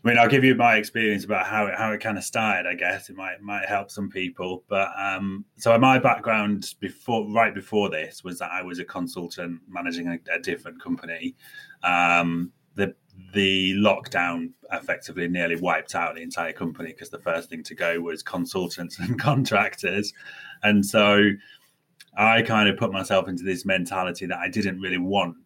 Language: English